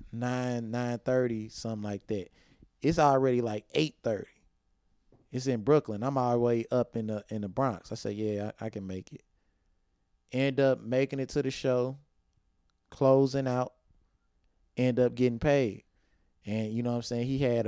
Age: 20-39